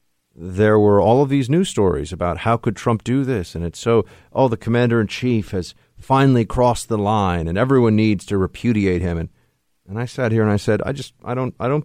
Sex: male